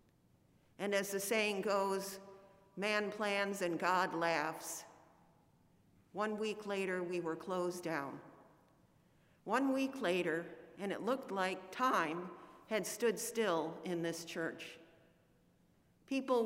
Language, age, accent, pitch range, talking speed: English, 50-69, American, 175-210 Hz, 115 wpm